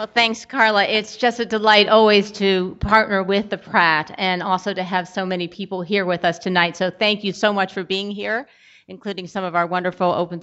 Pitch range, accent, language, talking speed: 170-195 Hz, American, English, 220 wpm